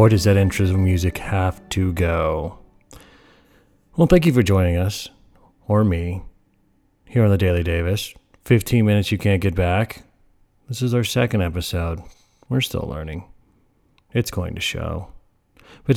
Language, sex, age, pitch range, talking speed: English, male, 40-59, 85-105 Hz, 155 wpm